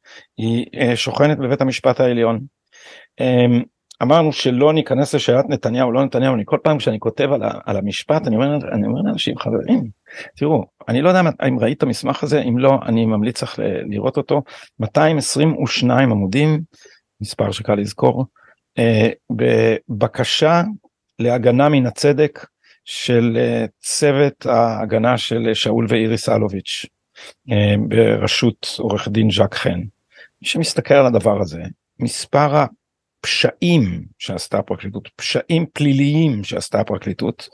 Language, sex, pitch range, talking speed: Hebrew, male, 115-145 Hz, 115 wpm